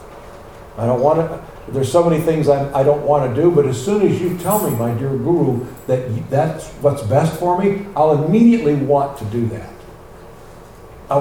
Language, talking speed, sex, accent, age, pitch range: English, 200 wpm, male, American, 60-79, 115-170 Hz